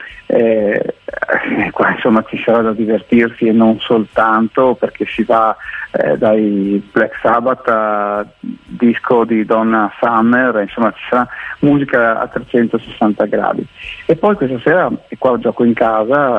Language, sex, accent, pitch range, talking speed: Italian, male, native, 110-125 Hz, 140 wpm